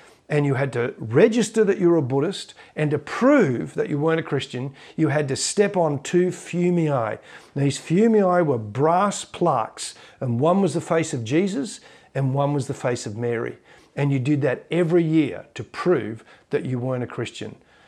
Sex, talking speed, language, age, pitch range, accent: male, 190 wpm, English, 50-69, 135-175 Hz, Australian